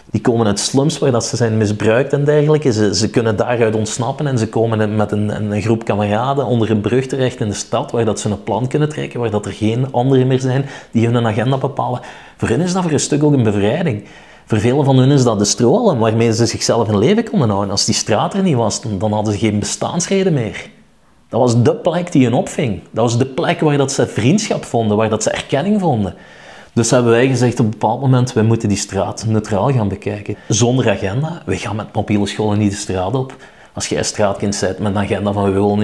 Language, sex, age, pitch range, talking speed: Dutch, male, 30-49, 105-135 Hz, 235 wpm